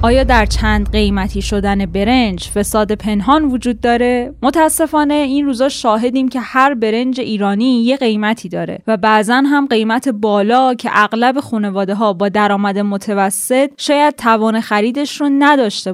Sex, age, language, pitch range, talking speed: female, 10-29, Persian, 215-270 Hz, 145 wpm